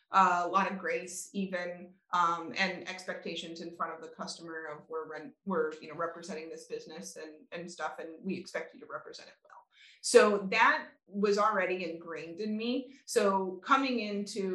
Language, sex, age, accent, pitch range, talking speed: English, female, 20-39, American, 175-215 Hz, 175 wpm